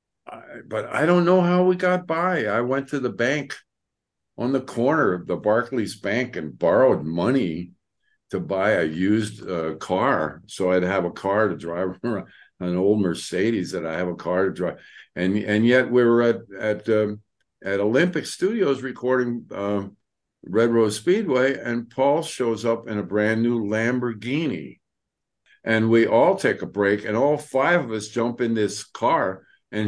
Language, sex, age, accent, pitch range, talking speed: English, male, 50-69, American, 95-130 Hz, 175 wpm